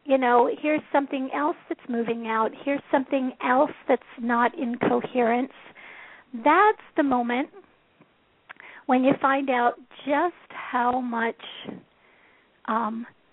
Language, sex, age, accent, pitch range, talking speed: English, female, 50-69, American, 240-275 Hz, 115 wpm